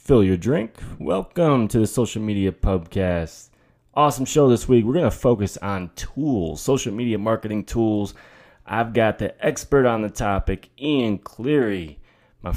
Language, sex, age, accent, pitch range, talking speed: English, male, 20-39, American, 90-125 Hz, 155 wpm